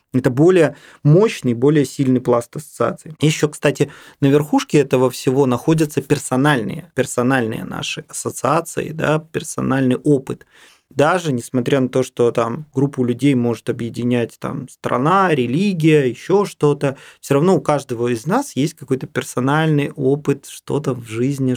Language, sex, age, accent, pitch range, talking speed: Russian, male, 20-39, native, 125-155 Hz, 135 wpm